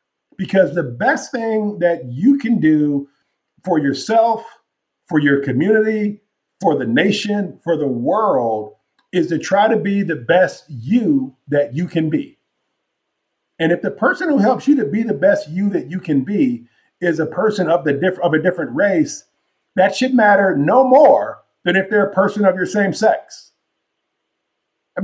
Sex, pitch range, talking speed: male, 150-205 Hz, 175 wpm